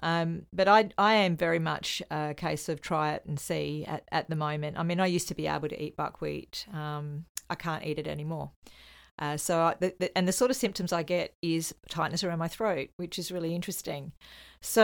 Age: 40-59